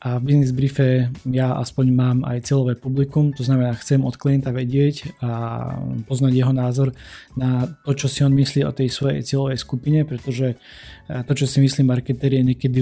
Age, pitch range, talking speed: 20-39, 125-135 Hz, 185 wpm